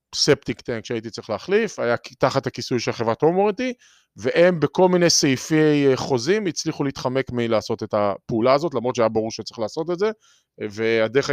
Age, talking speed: 20-39, 160 wpm